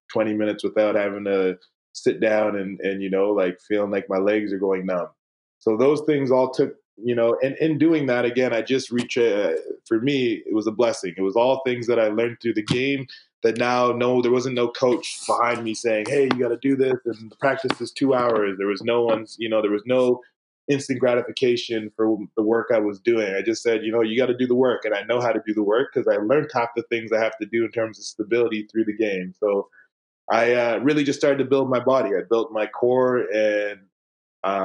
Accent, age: American, 20-39